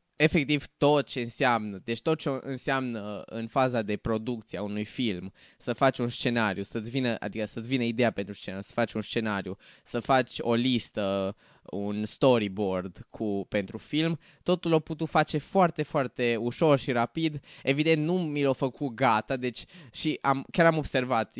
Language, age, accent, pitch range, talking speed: Romanian, 20-39, native, 115-145 Hz, 170 wpm